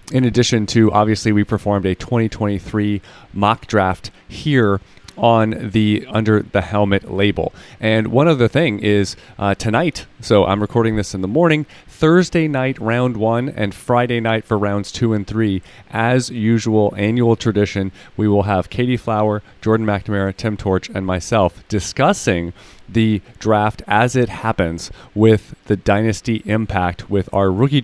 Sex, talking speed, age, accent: male, 155 wpm, 30-49, American